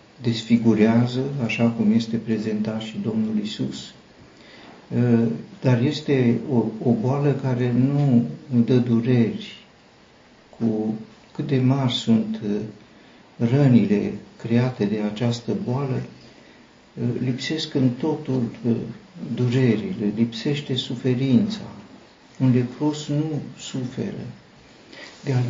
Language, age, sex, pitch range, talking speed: Romanian, 60-79, male, 115-145 Hz, 90 wpm